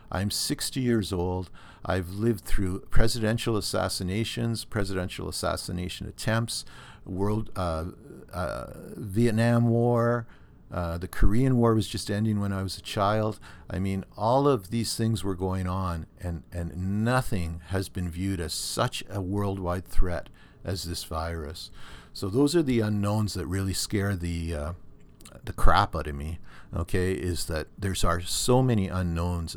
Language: English